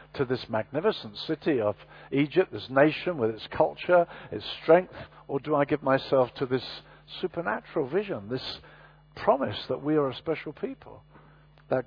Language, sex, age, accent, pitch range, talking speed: English, male, 50-69, British, 120-155 Hz, 155 wpm